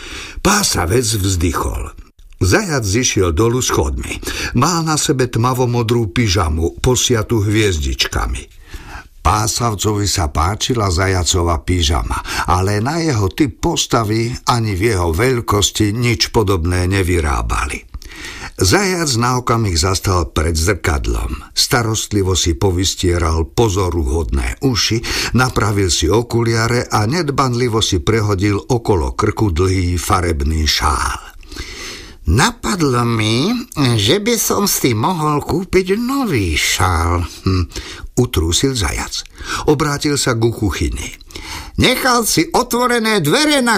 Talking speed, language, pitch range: 105 wpm, Slovak, 85-125 Hz